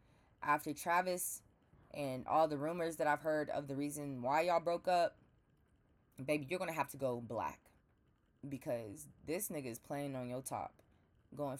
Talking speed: 170 wpm